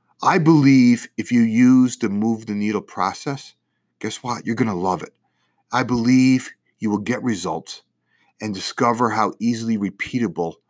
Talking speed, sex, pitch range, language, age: 155 wpm, male, 105-155 Hz, English, 30-49